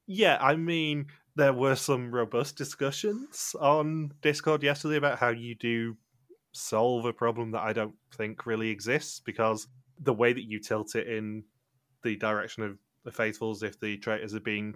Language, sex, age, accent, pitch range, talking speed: English, male, 20-39, British, 105-130 Hz, 170 wpm